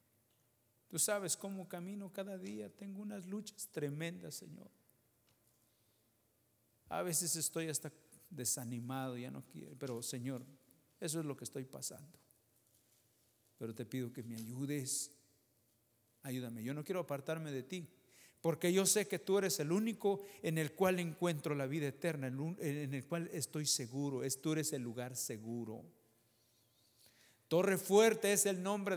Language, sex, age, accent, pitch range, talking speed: English, male, 50-69, Mexican, 120-175 Hz, 145 wpm